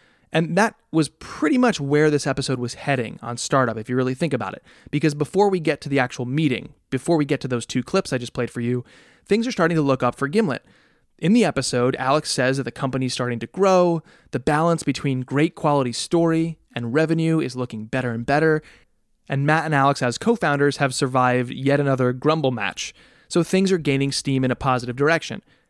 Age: 20-39